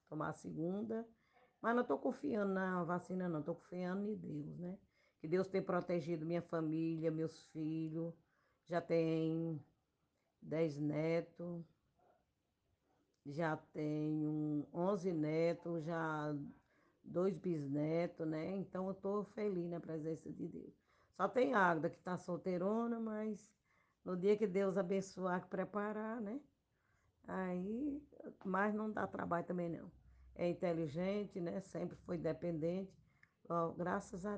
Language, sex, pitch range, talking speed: Portuguese, female, 165-200 Hz, 130 wpm